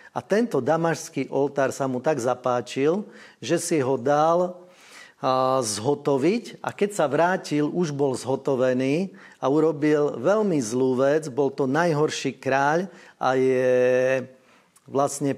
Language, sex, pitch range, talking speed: Slovak, male, 130-160 Hz, 125 wpm